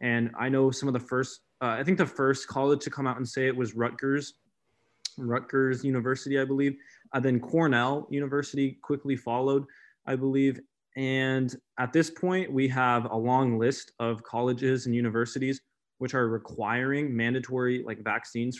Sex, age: male, 20-39